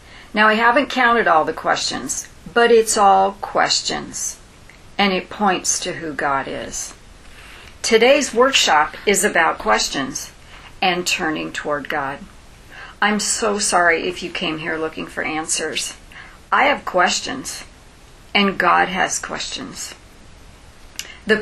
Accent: American